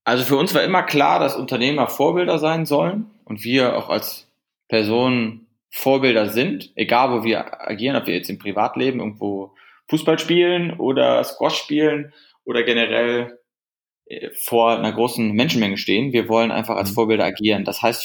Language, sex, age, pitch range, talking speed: German, male, 20-39, 110-140 Hz, 160 wpm